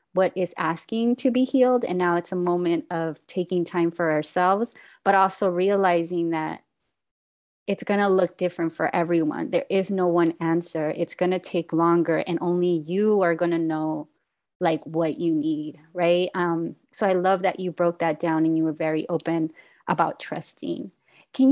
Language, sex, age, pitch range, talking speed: English, female, 20-39, 170-200 Hz, 185 wpm